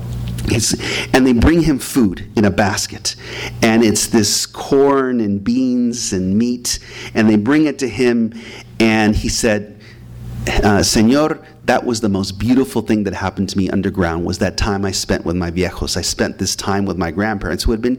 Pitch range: 100-125 Hz